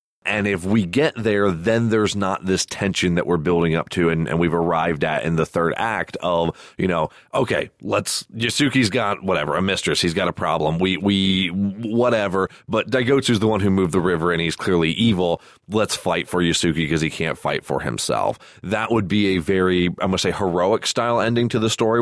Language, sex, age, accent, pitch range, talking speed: English, male, 30-49, American, 90-115 Hz, 215 wpm